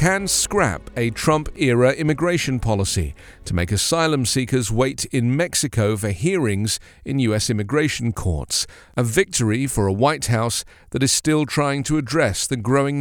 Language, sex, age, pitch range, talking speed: English, male, 40-59, 100-145 Hz, 150 wpm